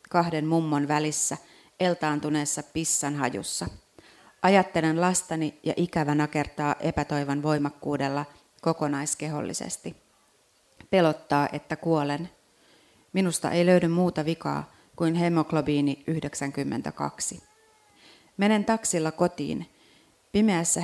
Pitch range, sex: 150-170 Hz, female